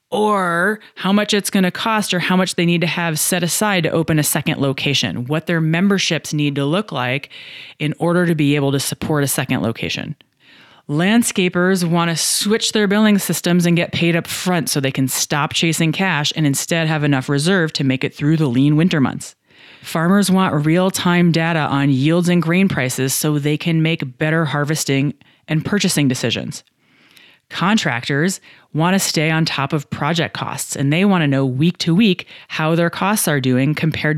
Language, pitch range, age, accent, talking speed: English, 150-185 Hz, 30-49, American, 195 wpm